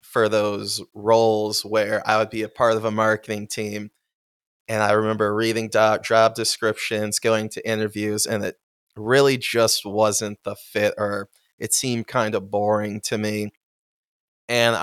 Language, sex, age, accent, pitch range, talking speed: English, male, 20-39, American, 105-115 Hz, 160 wpm